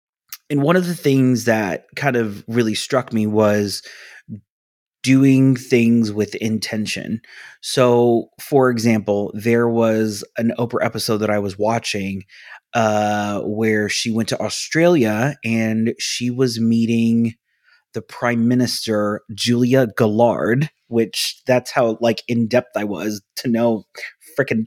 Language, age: English, 30-49